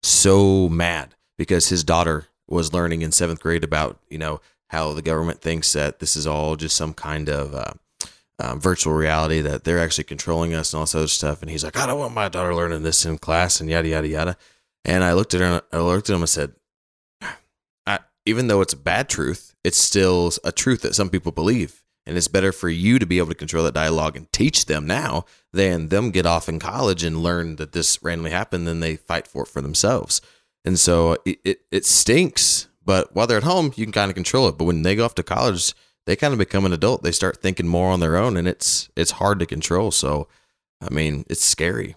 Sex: male